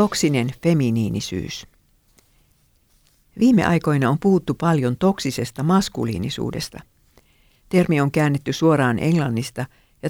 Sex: female